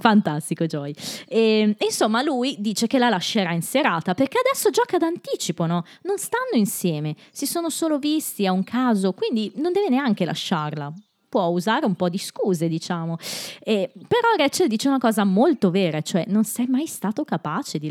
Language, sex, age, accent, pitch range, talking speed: Italian, female, 20-39, native, 160-230 Hz, 180 wpm